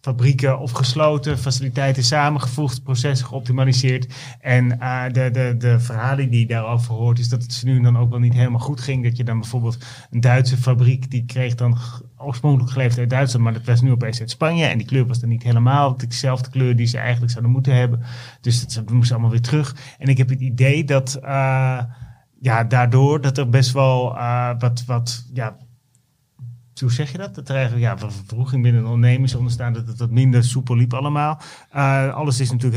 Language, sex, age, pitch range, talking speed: Dutch, male, 30-49, 120-135 Hz, 205 wpm